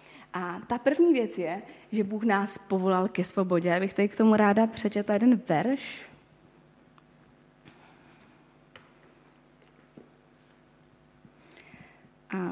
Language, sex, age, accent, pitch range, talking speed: Czech, female, 20-39, native, 185-220 Hz, 100 wpm